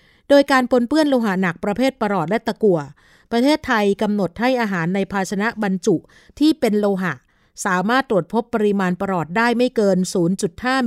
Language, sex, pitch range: Thai, female, 185-230 Hz